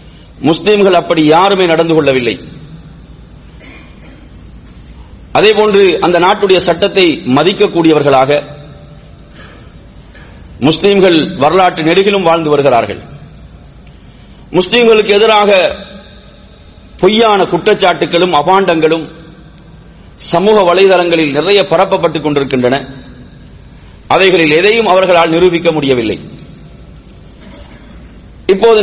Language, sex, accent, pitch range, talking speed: English, male, Indian, 160-200 Hz, 90 wpm